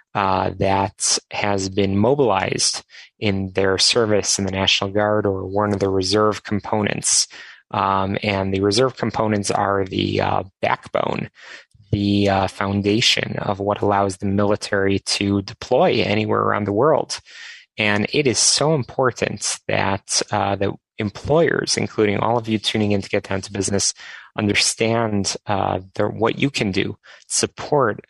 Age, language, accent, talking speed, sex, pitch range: 20-39, English, American, 145 wpm, male, 100-110 Hz